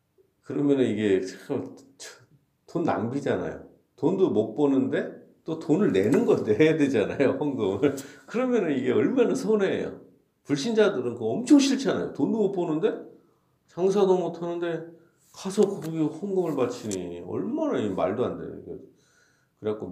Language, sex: Korean, male